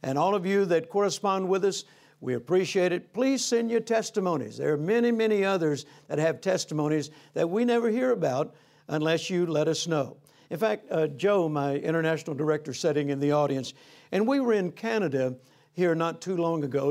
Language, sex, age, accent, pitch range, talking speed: English, male, 60-79, American, 150-185 Hz, 190 wpm